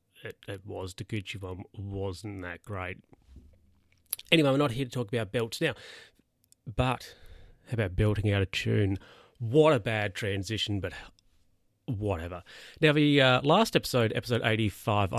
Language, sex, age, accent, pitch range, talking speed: English, male, 30-49, Australian, 100-120 Hz, 150 wpm